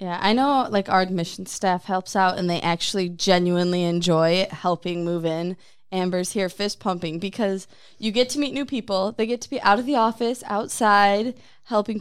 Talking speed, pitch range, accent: 190 wpm, 180-220 Hz, American